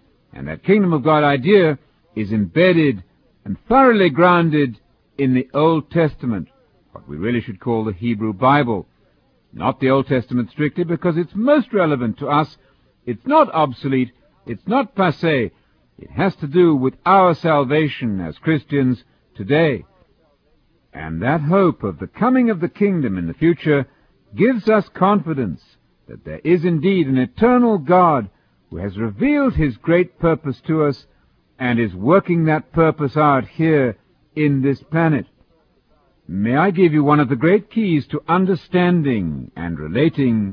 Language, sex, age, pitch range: English, male, 60-79, 120-175 Hz